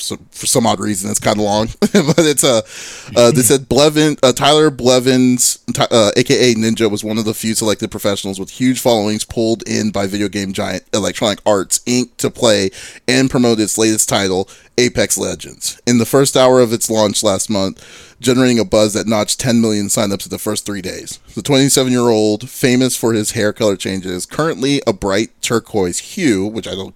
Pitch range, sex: 105-130 Hz, male